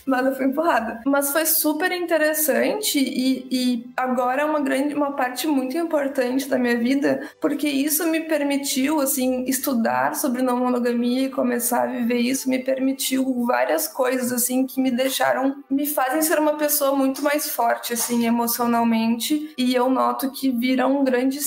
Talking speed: 165 wpm